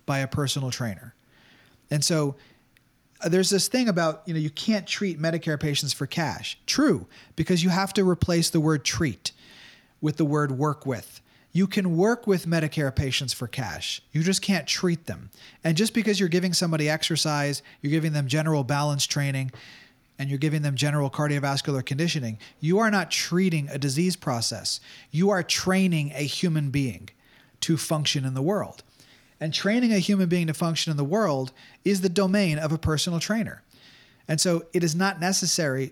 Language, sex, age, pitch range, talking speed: English, male, 30-49, 135-175 Hz, 180 wpm